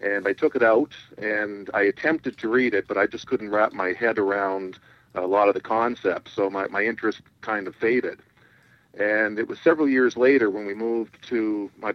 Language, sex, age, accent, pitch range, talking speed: English, male, 50-69, American, 100-115 Hz, 210 wpm